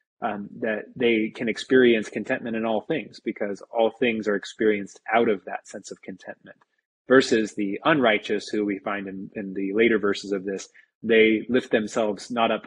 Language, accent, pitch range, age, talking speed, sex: English, American, 100-115 Hz, 20-39, 180 wpm, male